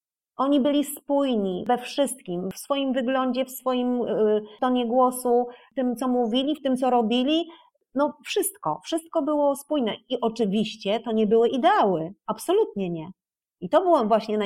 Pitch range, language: 205-255 Hz, Polish